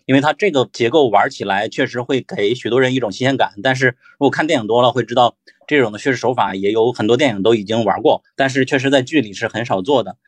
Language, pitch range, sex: Chinese, 115-140 Hz, male